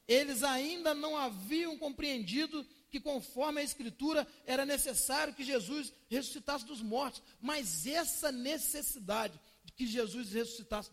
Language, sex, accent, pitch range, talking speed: Portuguese, male, Brazilian, 215-295 Hz, 125 wpm